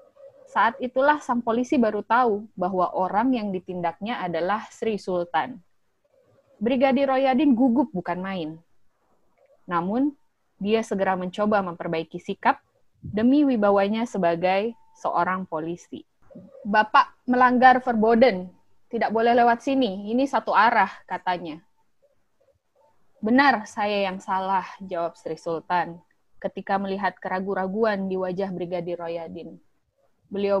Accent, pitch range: native, 185-245 Hz